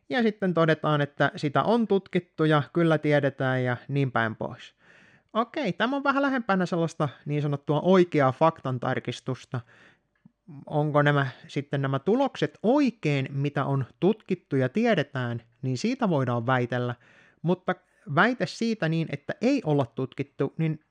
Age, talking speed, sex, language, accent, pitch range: 30-49, 135 wpm, male, Finnish, native, 135-190 Hz